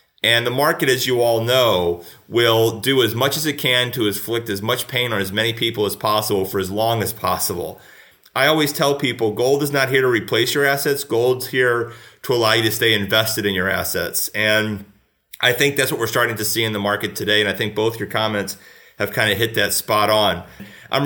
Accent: American